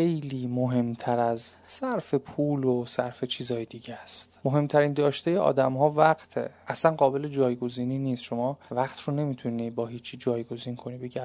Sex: male